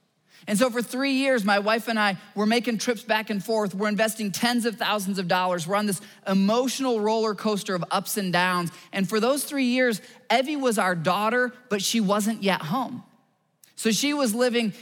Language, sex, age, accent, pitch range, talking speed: English, male, 20-39, American, 155-220 Hz, 205 wpm